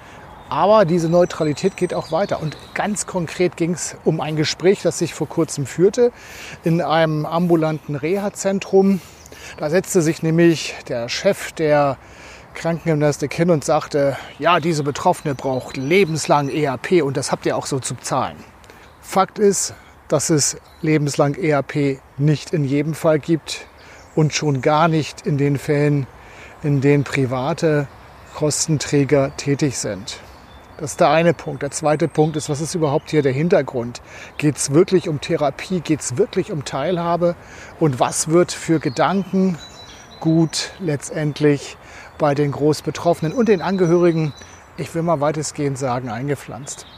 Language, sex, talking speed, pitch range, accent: German, male, 150 wpm, 145-170 Hz, German